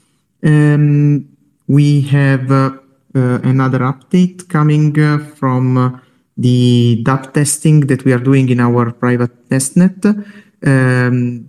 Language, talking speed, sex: English, 115 wpm, male